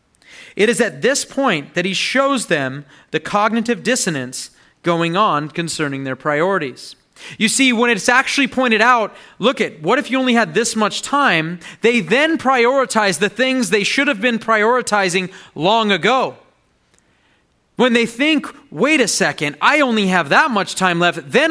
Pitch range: 170-235 Hz